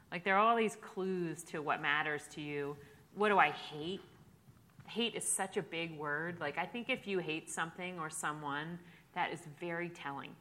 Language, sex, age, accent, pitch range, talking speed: English, female, 30-49, American, 160-195 Hz, 195 wpm